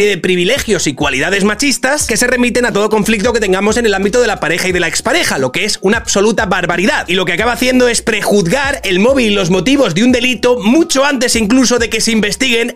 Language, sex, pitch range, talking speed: Spanish, male, 200-265 Hz, 240 wpm